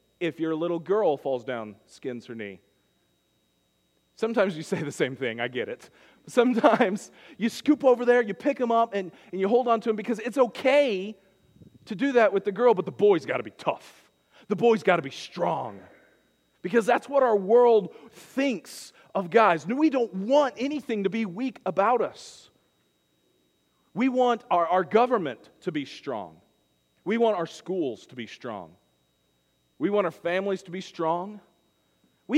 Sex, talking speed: male, 175 wpm